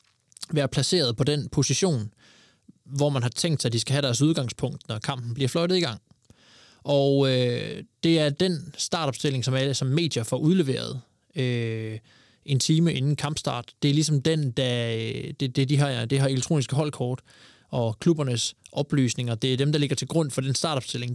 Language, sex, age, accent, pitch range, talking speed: Danish, male, 20-39, native, 125-150 Hz, 180 wpm